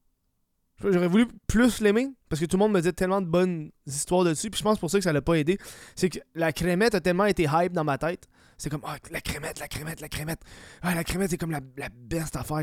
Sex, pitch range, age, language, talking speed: male, 140-190 Hz, 20-39, French, 265 wpm